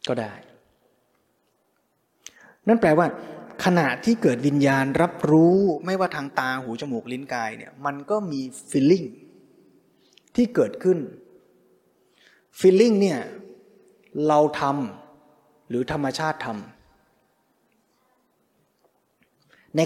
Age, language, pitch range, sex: 20-39, Thai, 130-190 Hz, male